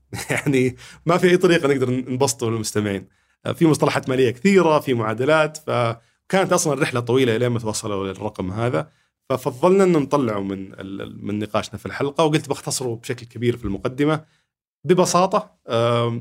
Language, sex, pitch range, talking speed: Arabic, male, 105-140 Hz, 150 wpm